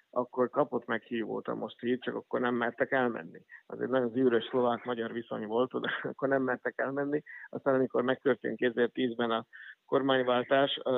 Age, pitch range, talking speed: 50-69, 120-130 Hz, 160 wpm